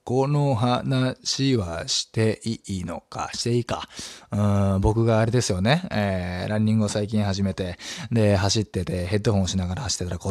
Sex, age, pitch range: male, 20-39, 100-145 Hz